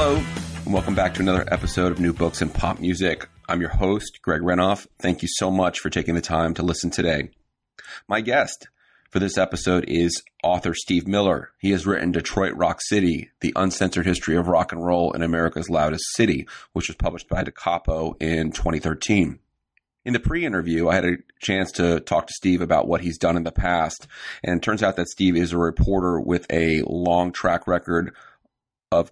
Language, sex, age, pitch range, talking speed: English, male, 30-49, 85-90 Hz, 200 wpm